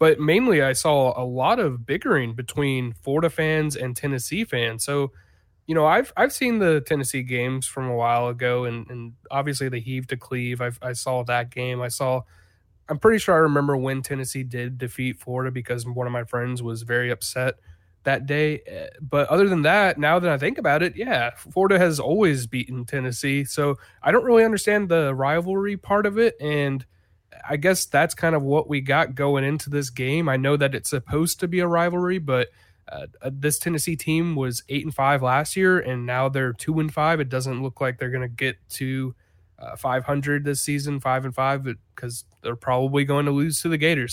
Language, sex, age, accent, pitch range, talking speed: English, male, 20-39, American, 125-155 Hz, 205 wpm